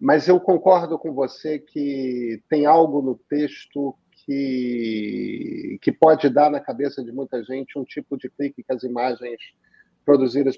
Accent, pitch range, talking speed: Brazilian, 125-165 Hz, 155 wpm